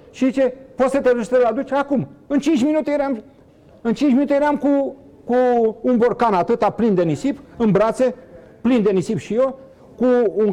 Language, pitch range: Romanian, 145-240 Hz